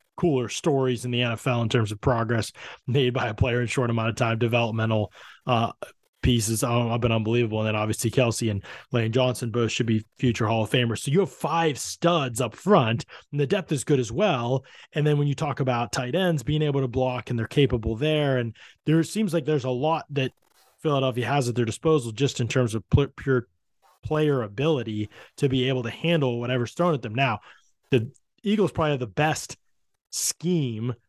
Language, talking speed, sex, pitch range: English, 205 wpm, male, 115-150 Hz